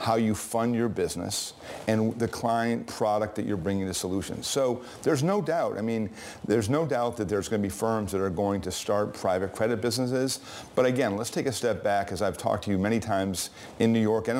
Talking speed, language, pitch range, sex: 230 wpm, English, 100-120 Hz, male